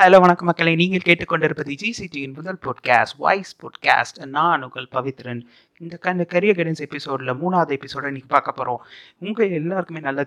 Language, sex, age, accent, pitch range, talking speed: Tamil, male, 30-49, native, 140-175 Hz, 150 wpm